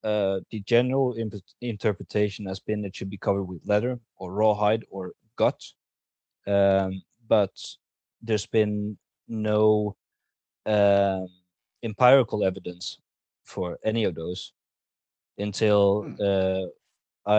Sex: male